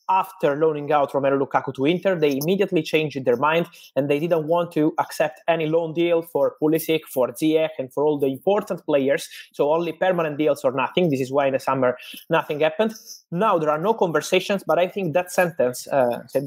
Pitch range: 140-175 Hz